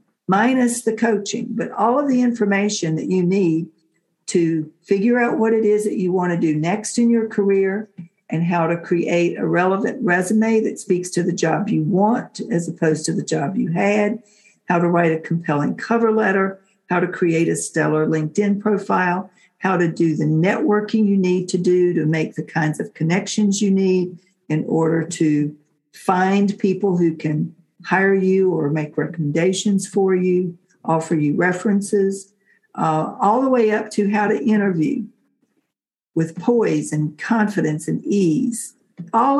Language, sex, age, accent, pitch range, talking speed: English, female, 60-79, American, 165-210 Hz, 170 wpm